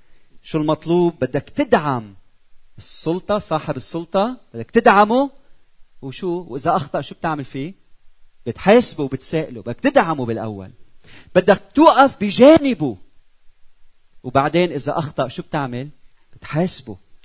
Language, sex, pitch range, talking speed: Arabic, male, 120-190 Hz, 100 wpm